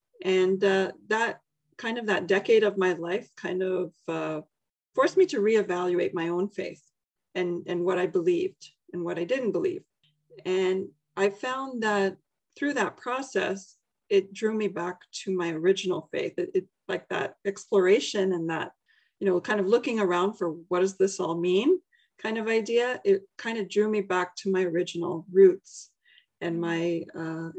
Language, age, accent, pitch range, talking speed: English, 40-59, American, 175-215 Hz, 175 wpm